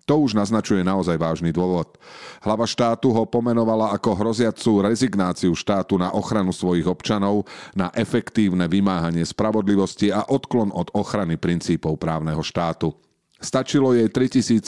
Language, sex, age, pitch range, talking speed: Slovak, male, 40-59, 90-115 Hz, 130 wpm